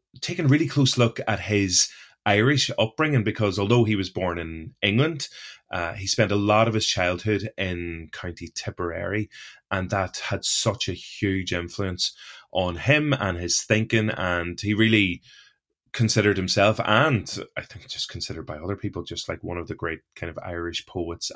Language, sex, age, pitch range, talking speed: English, male, 20-39, 85-110 Hz, 175 wpm